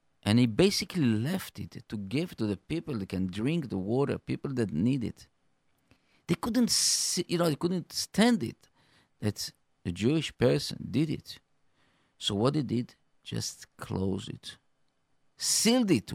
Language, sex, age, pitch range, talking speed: English, male, 50-69, 100-140 Hz, 160 wpm